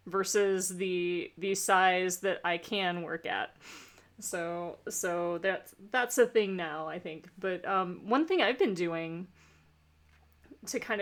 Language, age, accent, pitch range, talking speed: English, 30-49, American, 175-215 Hz, 145 wpm